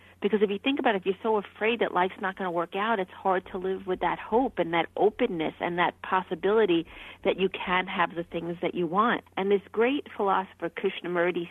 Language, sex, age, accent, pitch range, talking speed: English, female, 40-59, American, 180-215 Hz, 230 wpm